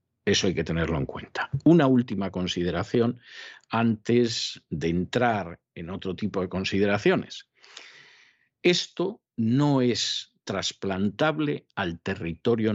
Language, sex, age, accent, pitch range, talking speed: Spanish, male, 50-69, Spanish, 95-120 Hz, 110 wpm